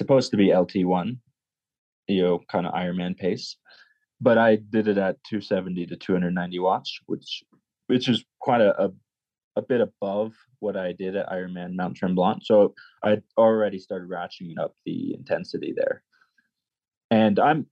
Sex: male